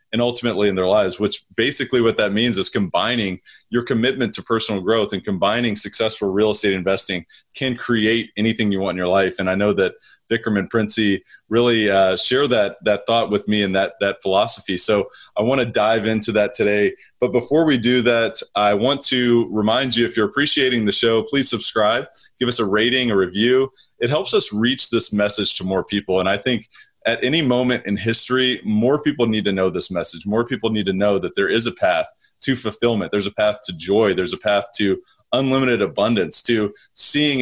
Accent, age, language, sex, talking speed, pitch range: American, 30-49, English, male, 210 wpm, 105-125 Hz